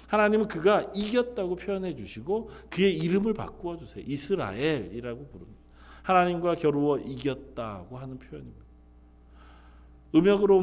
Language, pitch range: Korean, 115-180 Hz